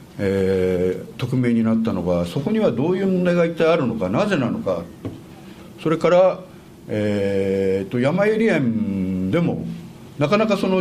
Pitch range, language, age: 110-180 Hz, Japanese, 60-79